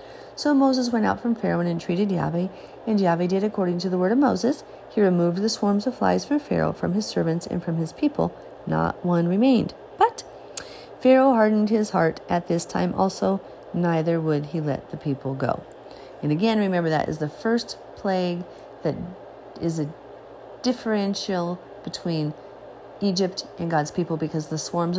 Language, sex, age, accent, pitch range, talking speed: English, female, 40-59, American, 150-200 Hz, 175 wpm